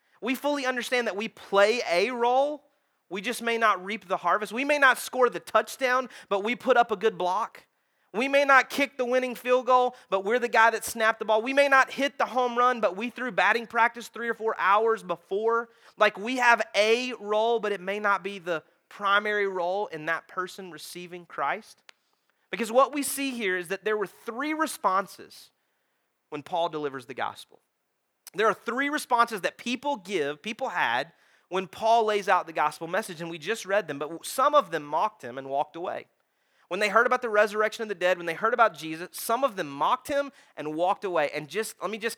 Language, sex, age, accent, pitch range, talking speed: English, male, 30-49, American, 185-245 Hz, 215 wpm